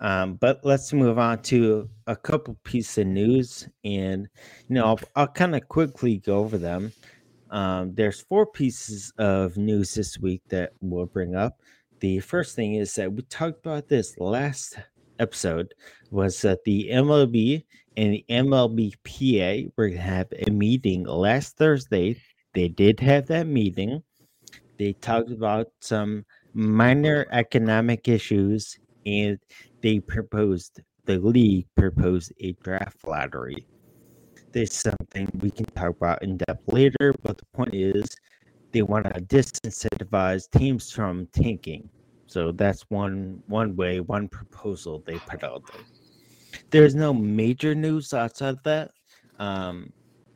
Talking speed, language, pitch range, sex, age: 140 wpm, English, 95-130 Hz, male, 30-49